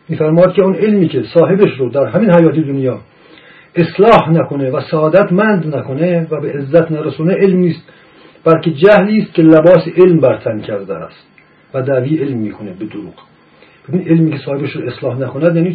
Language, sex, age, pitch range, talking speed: Persian, male, 50-69, 135-185 Hz, 170 wpm